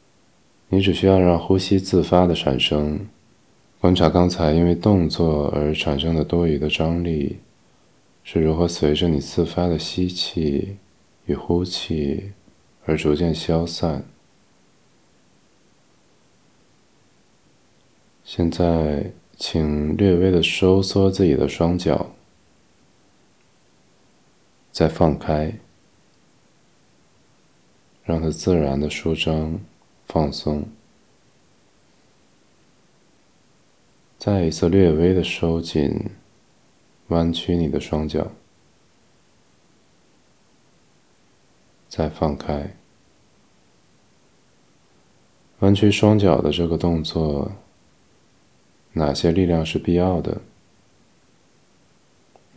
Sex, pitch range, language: male, 75-90 Hz, Chinese